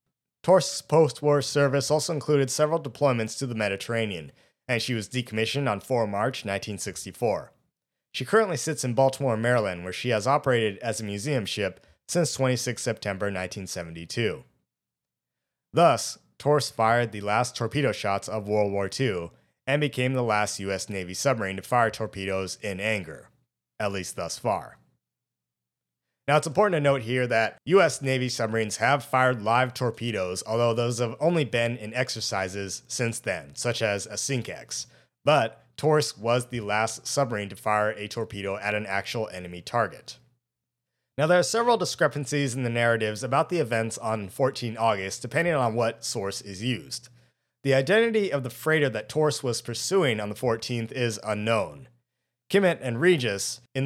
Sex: male